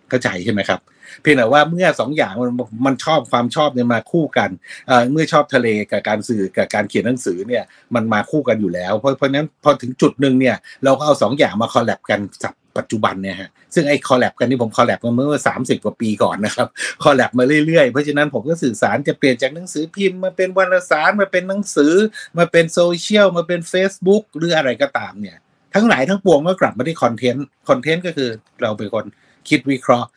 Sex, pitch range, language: male, 120-155 Hz, Thai